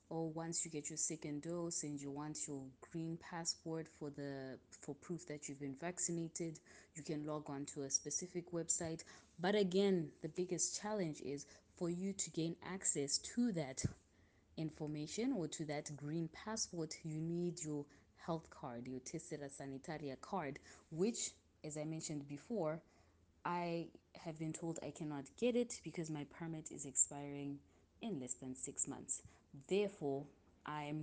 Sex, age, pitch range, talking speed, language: female, 20-39, 140-165 Hz, 160 wpm, English